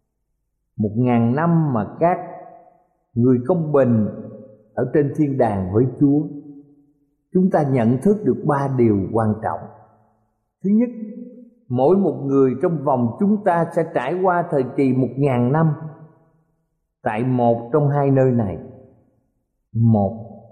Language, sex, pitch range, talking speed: Vietnamese, male, 120-175 Hz, 135 wpm